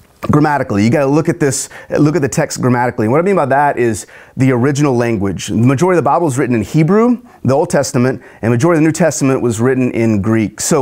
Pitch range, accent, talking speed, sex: 115-155 Hz, American, 250 wpm, male